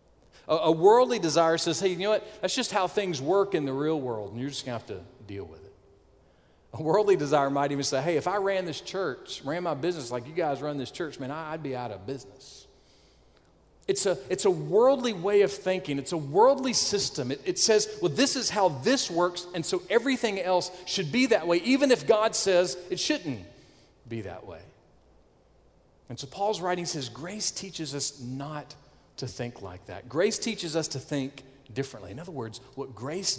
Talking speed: 210 wpm